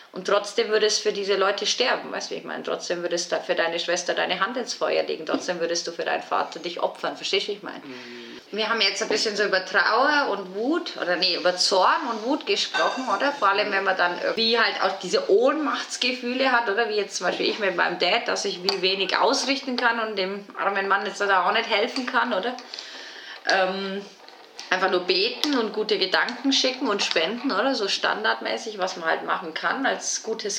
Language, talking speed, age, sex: German, 215 wpm, 30-49, female